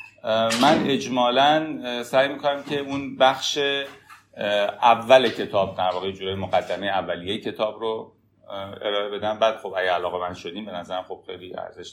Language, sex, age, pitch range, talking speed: Persian, male, 30-49, 95-125 Hz, 140 wpm